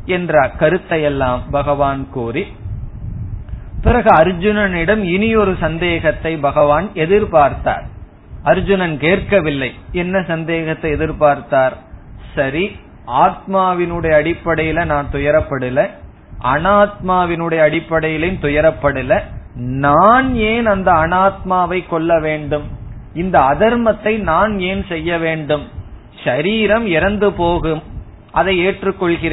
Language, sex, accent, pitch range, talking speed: Tamil, male, native, 140-185 Hz, 70 wpm